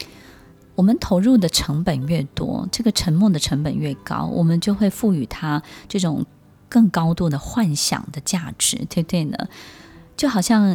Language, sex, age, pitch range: Chinese, female, 20-39, 150-195 Hz